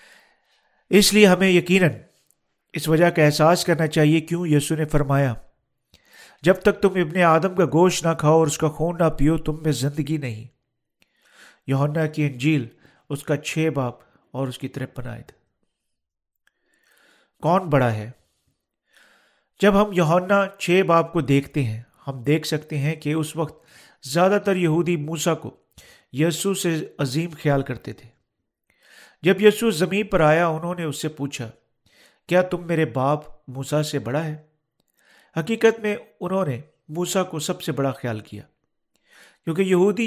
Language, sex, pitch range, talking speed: Urdu, male, 140-180 Hz, 155 wpm